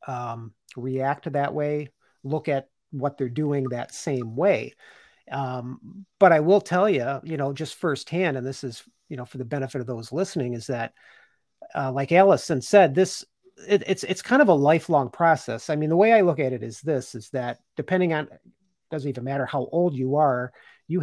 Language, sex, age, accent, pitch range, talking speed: English, male, 40-59, American, 125-160 Hz, 195 wpm